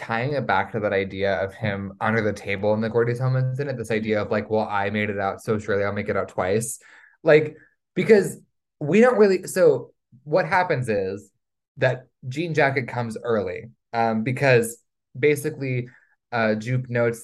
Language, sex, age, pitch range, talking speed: English, male, 20-39, 110-140 Hz, 180 wpm